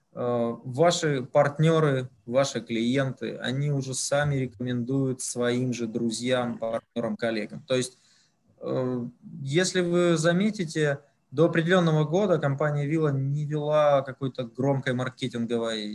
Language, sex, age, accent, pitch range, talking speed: Russian, male, 20-39, native, 115-150 Hz, 105 wpm